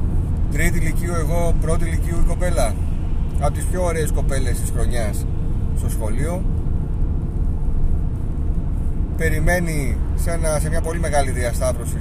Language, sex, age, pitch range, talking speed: Greek, male, 30-49, 70-80 Hz, 120 wpm